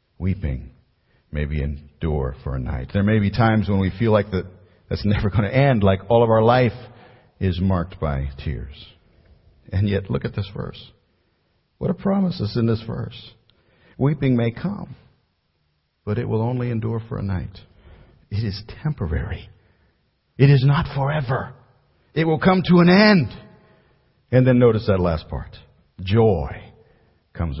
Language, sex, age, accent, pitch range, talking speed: English, male, 50-69, American, 95-135 Hz, 160 wpm